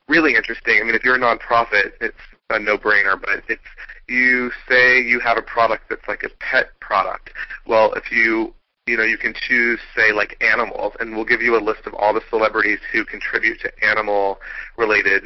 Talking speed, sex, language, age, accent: 195 wpm, male, English, 30-49, American